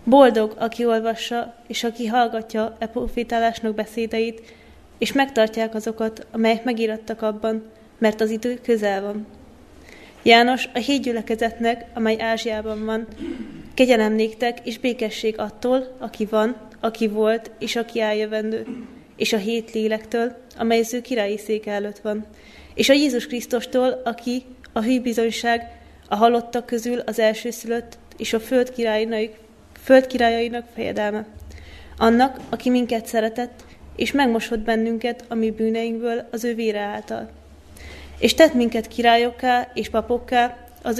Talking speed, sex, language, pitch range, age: 130 wpm, female, Hungarian, 220-240 Hz, 20-39